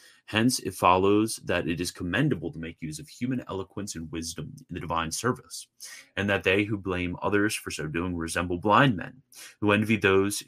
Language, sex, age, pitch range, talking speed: English, male, 30-49, 85-105 Hz, 195 wpm